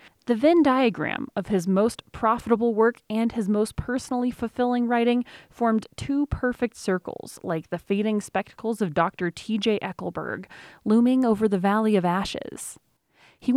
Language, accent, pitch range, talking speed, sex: English, American, 195-245 Hz, 145 wpm, female